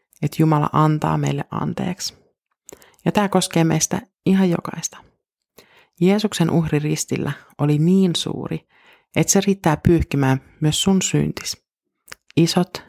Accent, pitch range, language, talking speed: native, 140-165 Hz, Finnish, 115 wpm